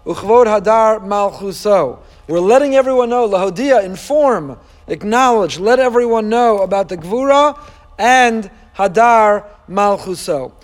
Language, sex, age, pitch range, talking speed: Hebrew, male, 40-59, 215-260 Hz, 120 wpm